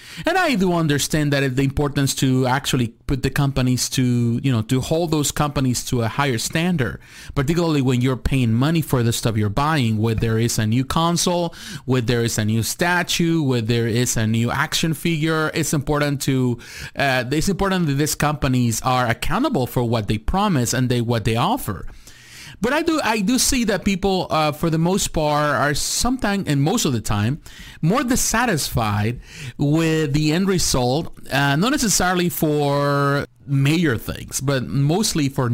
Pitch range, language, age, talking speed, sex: 125-170 Hz, English, 30-49, 180 wpm, male